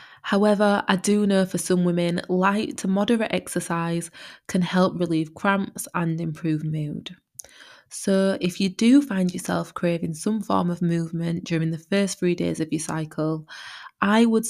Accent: British